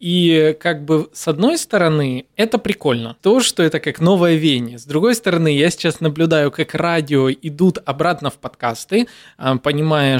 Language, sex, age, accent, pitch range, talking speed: Russian, male, 20-39, native, 140-175 Hz, 160 wpm